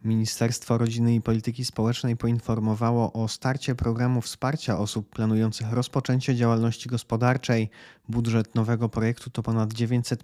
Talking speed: 125 wpm